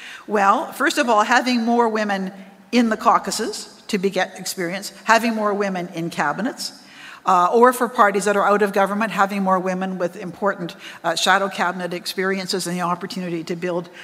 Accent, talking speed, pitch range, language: American, 180 wpm, 185-245 Hz, English